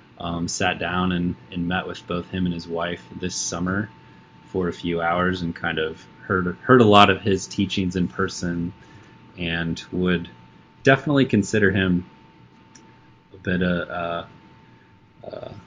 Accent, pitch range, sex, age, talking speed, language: American, 85-95 Hz, male, 30-49, 155 wpm, English